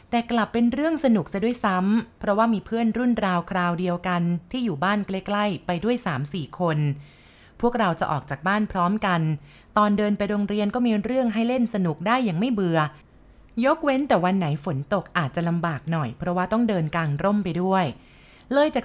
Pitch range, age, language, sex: 165-215 Hz, 20-39, Thai, female